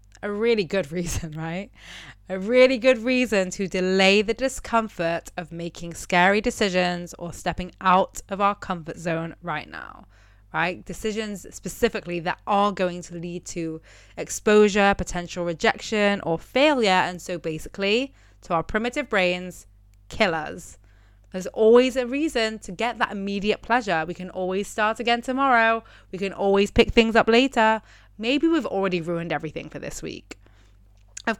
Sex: female